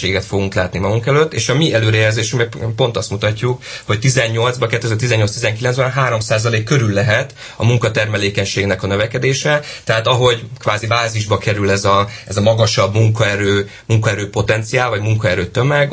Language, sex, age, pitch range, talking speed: Hungarian, male, 30-49, 100-120 Hz, 135 wpm